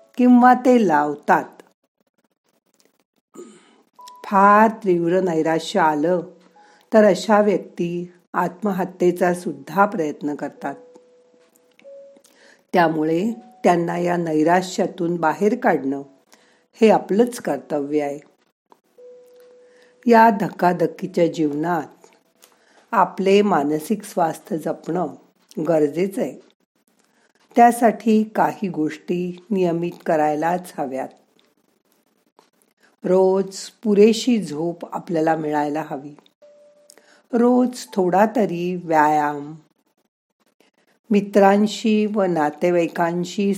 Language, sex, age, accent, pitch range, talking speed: Marathi, female, 50-69, native, 160-220 Hz, 65 wpm